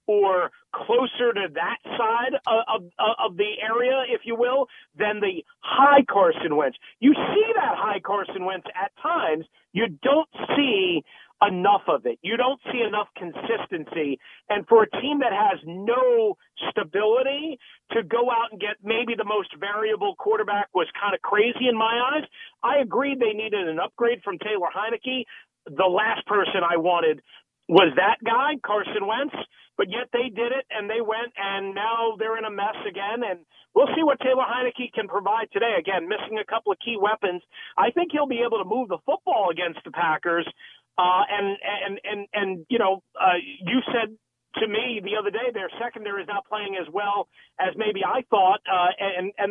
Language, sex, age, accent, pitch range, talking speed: English, male, 40-59, American, 200-260 Hz, 185 wpm